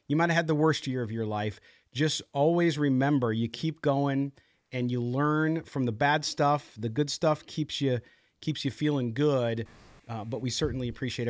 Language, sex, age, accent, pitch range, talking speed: English, male, 40-59, American, 120-160 Hz, 195 wpm